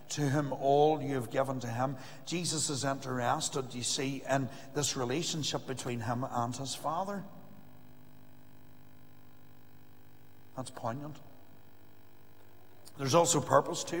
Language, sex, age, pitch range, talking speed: English, male, 60-79, 130-155 Hz, 115 wpm